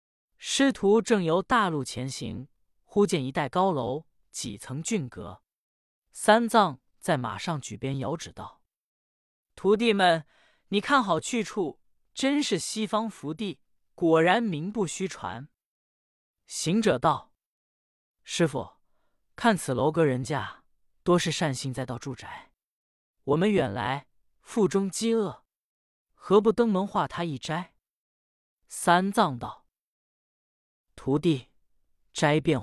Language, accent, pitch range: Chinese, native, 130-195 Hz